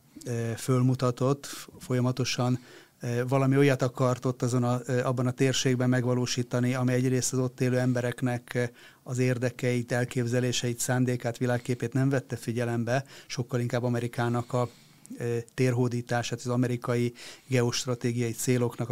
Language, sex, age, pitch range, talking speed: Hungarian, male, 30-49, 120-135 Hz, 100 wpm